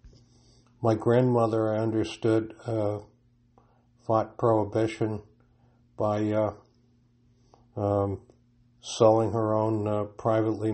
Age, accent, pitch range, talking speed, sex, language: 60-79, American, 110-120 Hz, 80 wpm, male, English